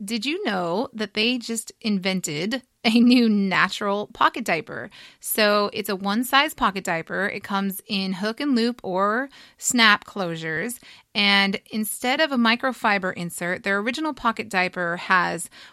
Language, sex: English, female